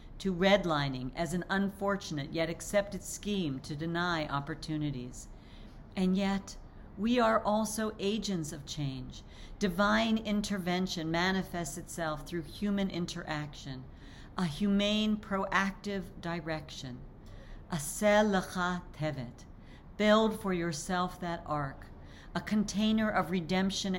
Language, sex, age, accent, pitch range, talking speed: English, female, 50-69, American, 150-190 Hz, 105 wpm